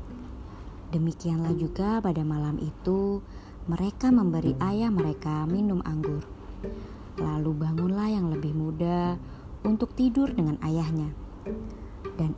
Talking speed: 100 wpm